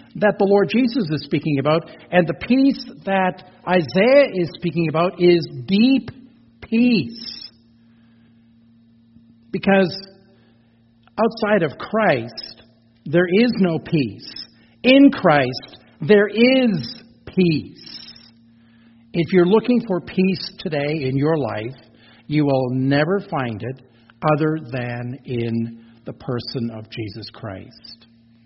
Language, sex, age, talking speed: English, male, 50-69, 110 wpm